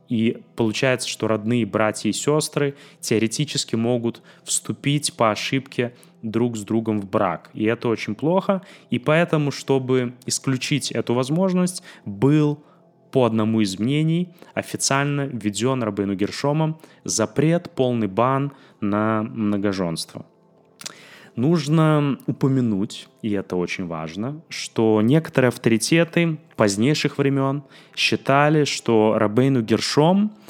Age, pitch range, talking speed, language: 20-39, 105-145 Hz, 110 wpm, Russian